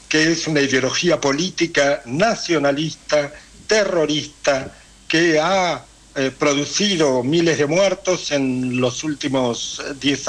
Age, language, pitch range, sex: 60-79, Spanish, 135-165 Hz, male